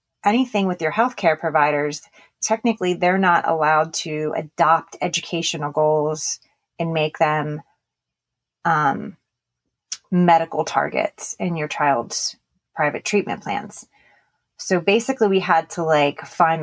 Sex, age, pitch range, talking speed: female, 30-49, 160-190 Hz, 115 wpm